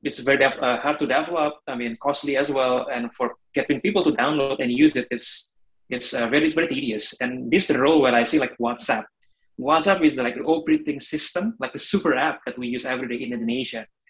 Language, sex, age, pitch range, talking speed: English, male, 20-39, 125-160 Hz, 230 wpm